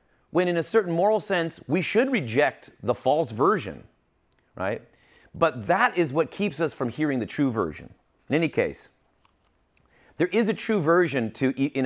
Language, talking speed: English, 170 wpm